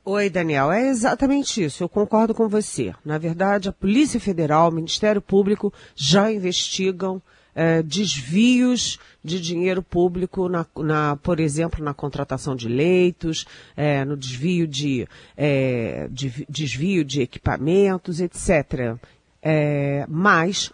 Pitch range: 150-185 Hz